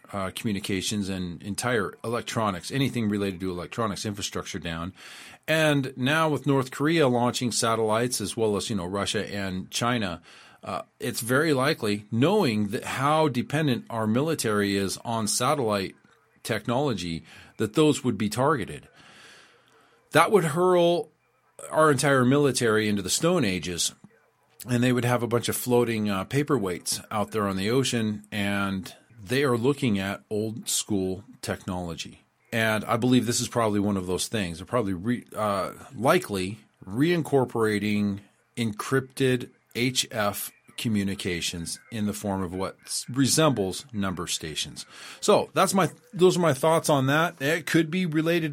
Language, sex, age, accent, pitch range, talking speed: English, male, 40-59, American, 100-140 Hz, 145 wpm